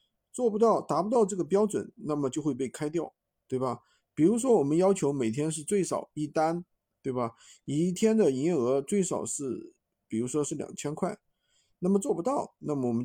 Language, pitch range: Chinese, 140-210 Hz